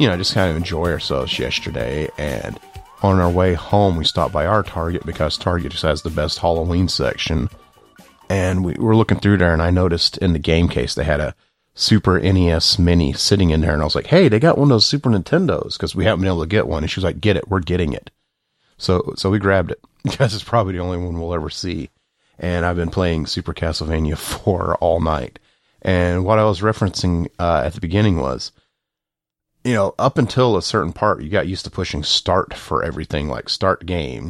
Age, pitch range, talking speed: 30-49, 85-100 Hz, 225 wpm